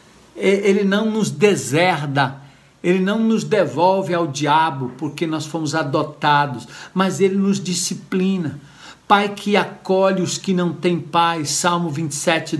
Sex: male